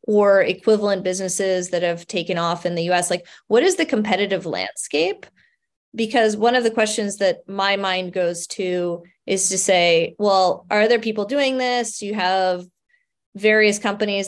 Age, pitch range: 20-39, 180-215 Hz